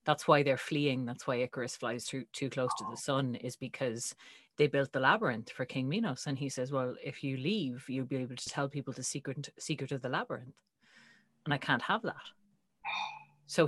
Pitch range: 125-165 Hz